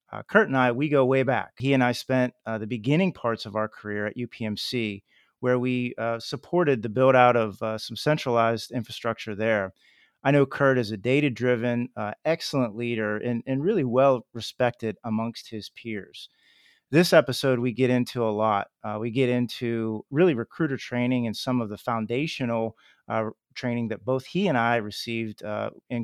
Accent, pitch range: American, 110-130 Hz